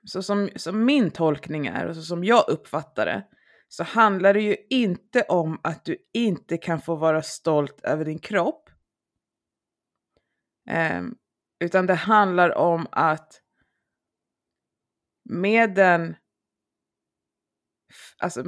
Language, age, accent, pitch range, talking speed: Swedish, 20-39, native, 165-205 Hz, 120 wpm